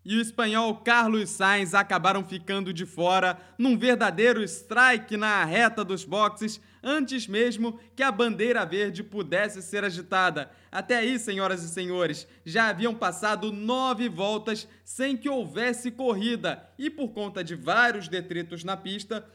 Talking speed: 145 wpm